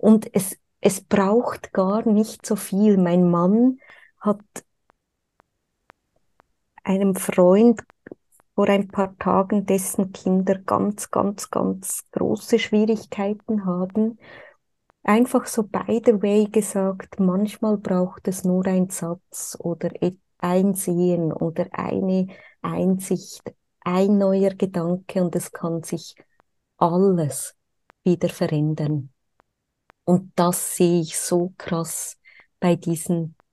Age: 20-39